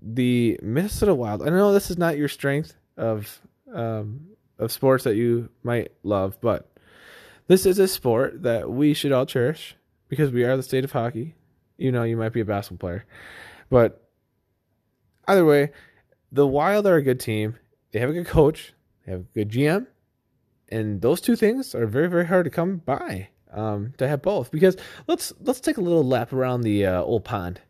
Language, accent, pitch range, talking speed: English, American, 105-155 Hz, 195 wpm